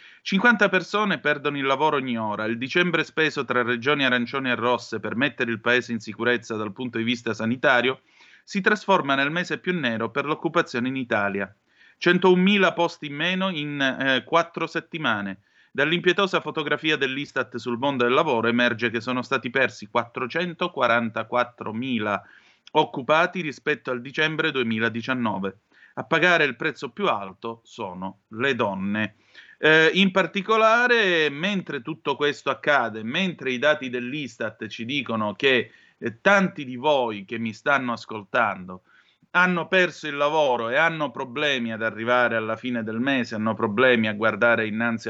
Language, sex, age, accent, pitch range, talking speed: Italian, male, 30-49, native, 115-160 Hz, 150 wpm